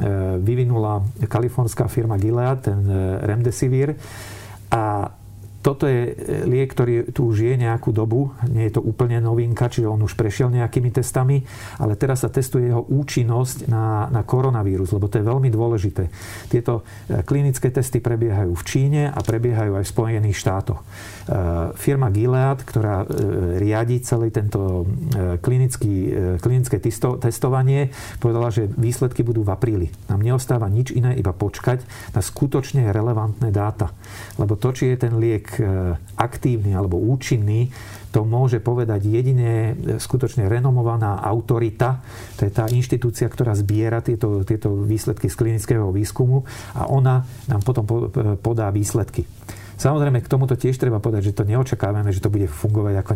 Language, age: Slovak, 50-69